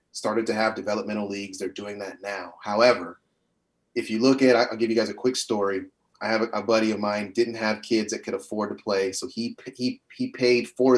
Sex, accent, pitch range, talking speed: male, American, 105-120 Hz, 230 wpm